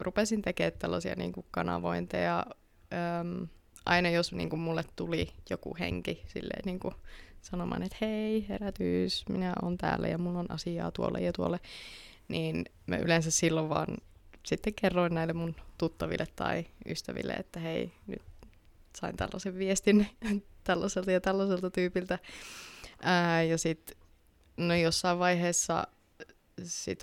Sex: female